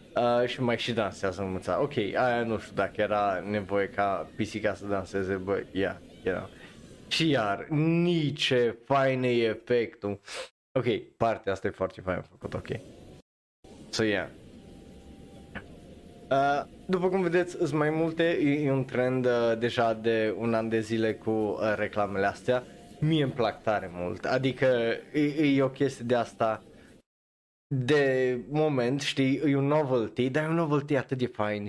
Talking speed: 165 wpm